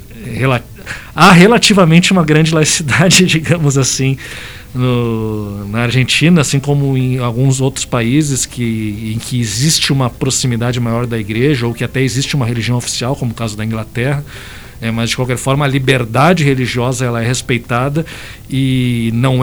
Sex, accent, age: male, Brazilian, 50-69